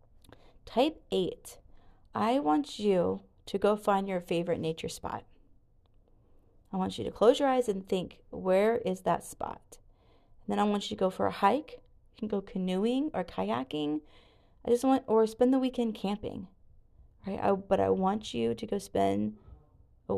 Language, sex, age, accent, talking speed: English, female, 30-49, American, 175 wpm